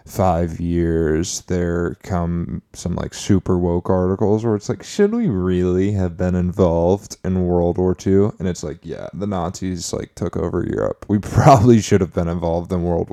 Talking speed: 185 wpm